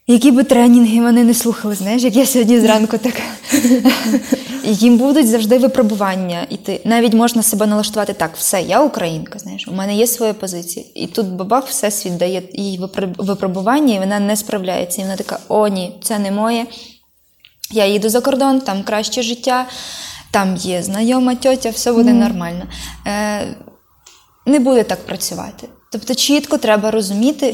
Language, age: Ukrainian, 20-39